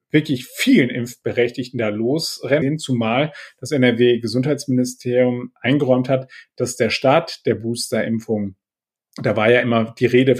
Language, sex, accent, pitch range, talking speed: German, male, German, 115-140 Hz, 125 wpm